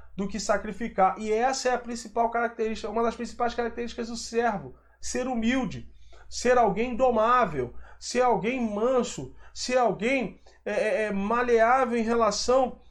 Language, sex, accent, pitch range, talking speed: Portuguese, male, Brazilian, 205-250 Hz, 140 wpm